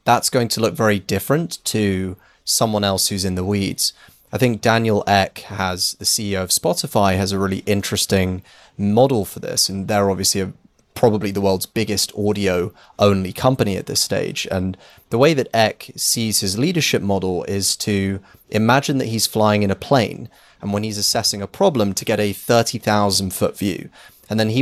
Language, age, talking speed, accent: English, 30-49, 175 wpm, British